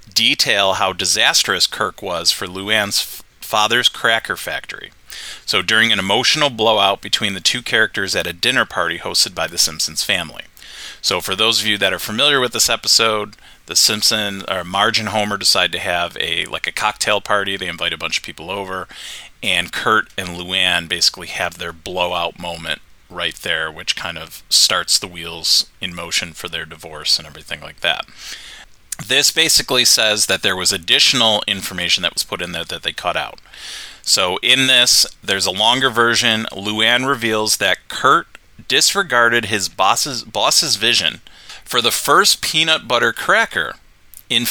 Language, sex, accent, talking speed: English, male, American, 170 wpm